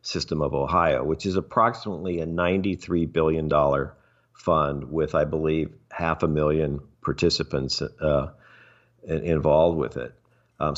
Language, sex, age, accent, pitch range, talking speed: English, male, 50-69, American, 85-105 Hz, 130 wpm